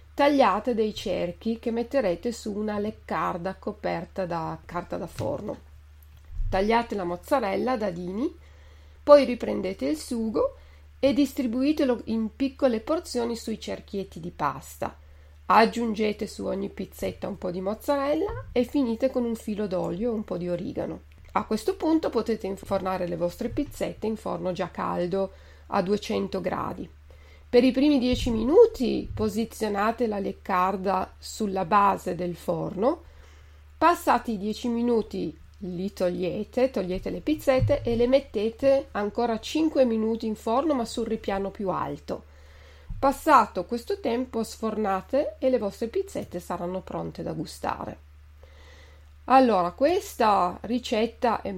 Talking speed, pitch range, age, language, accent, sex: 135 wpm, 180-250 Hz, 40-59, Italian, native, female